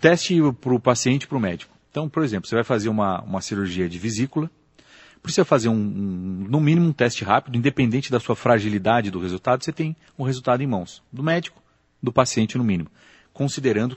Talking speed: 200 wpm